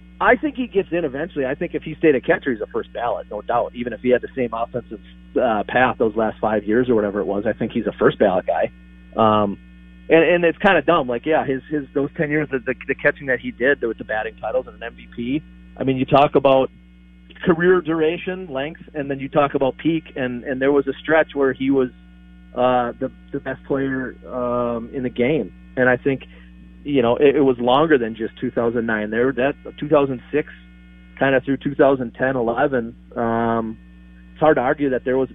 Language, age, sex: English, 40-59, male